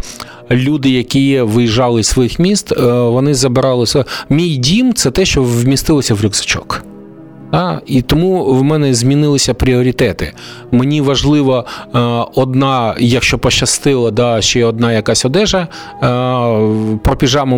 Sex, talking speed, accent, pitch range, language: male, 115 wpm, native, 115-145 Hz, Ukrainian